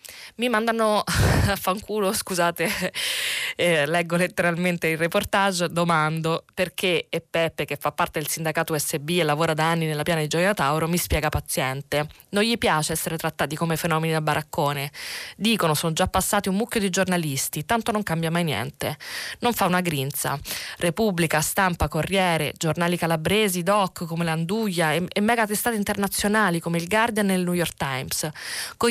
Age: 20-39